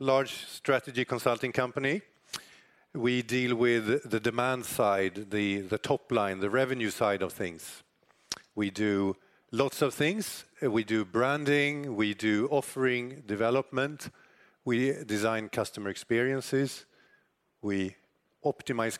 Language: Swedish